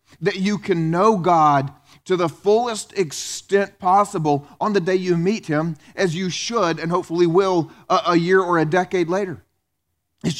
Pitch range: 170-215 Hz